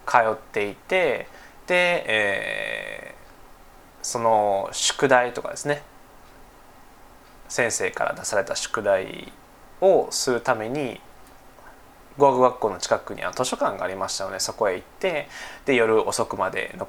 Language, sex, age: Japanese, male, 20-39